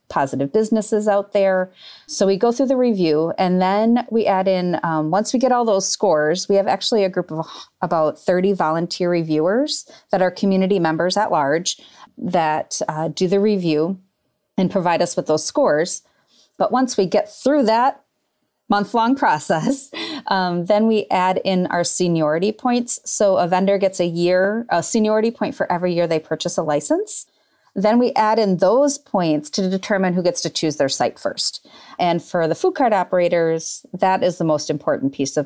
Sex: female